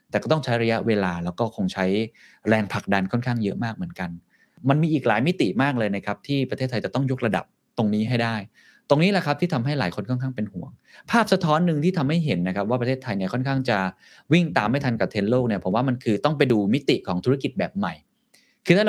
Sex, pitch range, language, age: male, 100-140 Hz, Thai, 20-39